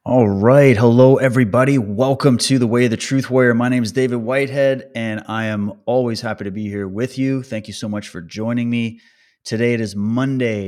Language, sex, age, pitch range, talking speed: English, male, 30-49, 100-120 Hz, 215 wpm